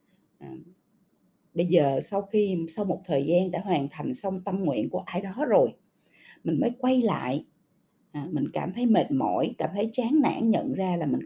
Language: Vietnamese